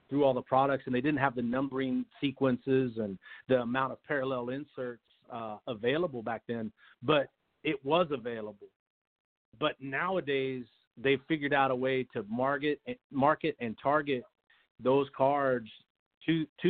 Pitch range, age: 125-145 Hz, 40-59